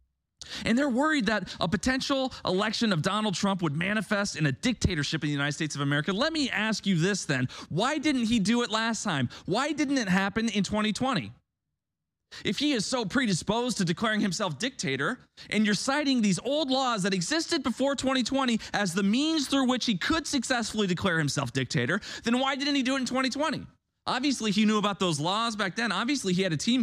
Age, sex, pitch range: 20-39, male, 170-245 Hz